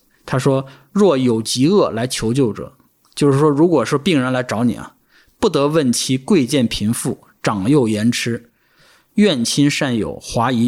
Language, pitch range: Chinese, 120-150 Hz